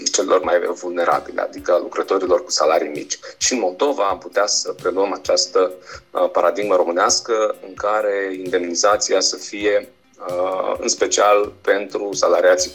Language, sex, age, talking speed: Romanian, male, 30-49, 125 wpm